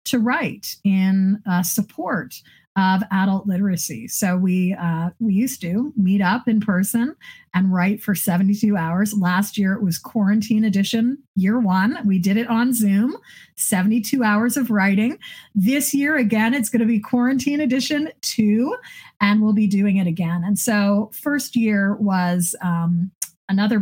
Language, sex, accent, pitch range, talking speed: English, female, American, 180-225 Hz, 160 wpm